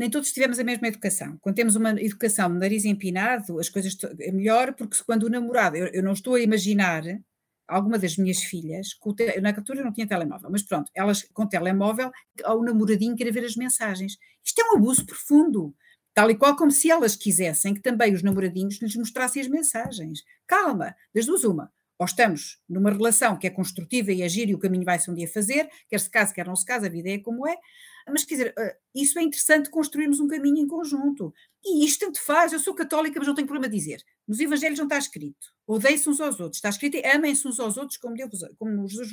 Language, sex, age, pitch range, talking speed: Portuguese, female, 50-69, 200-280 Hz, 220 wpm